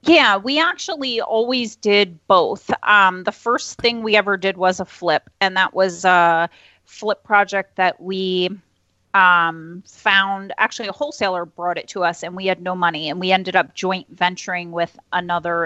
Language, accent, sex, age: English, American, female, 30-49